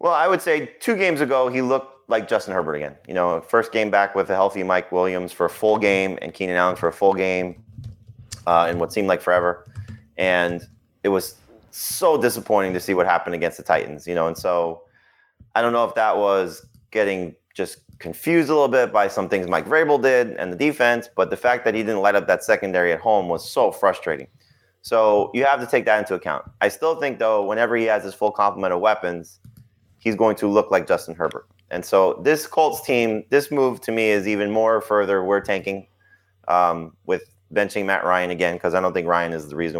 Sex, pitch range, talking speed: male, 90-115 Hz, 225 wpm